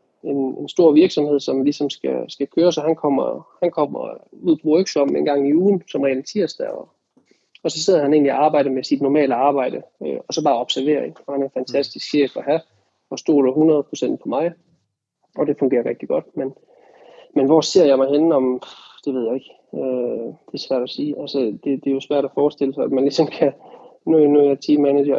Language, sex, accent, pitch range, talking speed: Danish, male, native, 135-150 Hz, 220 wpm